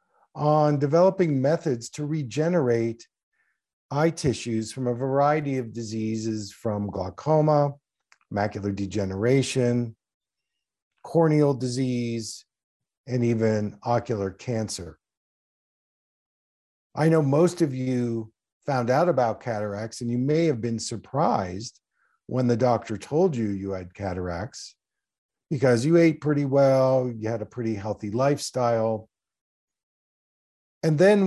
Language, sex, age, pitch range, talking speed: English, male, 50-69, 110-145 Hz, 110 wpm